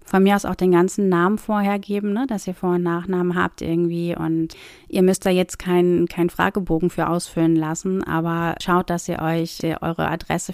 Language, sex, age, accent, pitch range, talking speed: German, female, 30-49, German, 170-200 Hz, 200 wpm